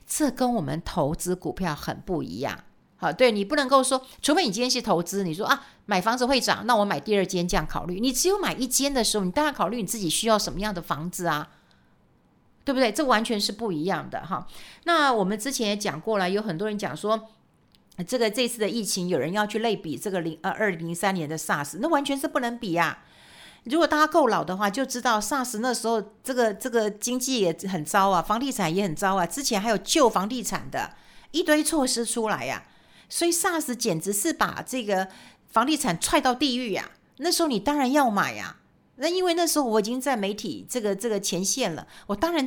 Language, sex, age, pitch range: Chinese, female, 50-69, 190-260 Hz